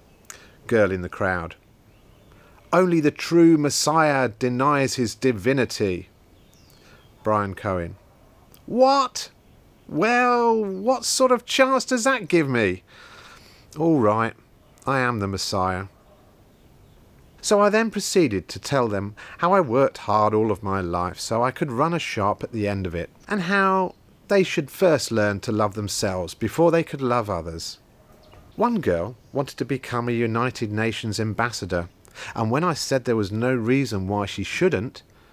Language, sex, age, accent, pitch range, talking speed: English, male, 40-59, British, 100-150 Hz, 150 wpm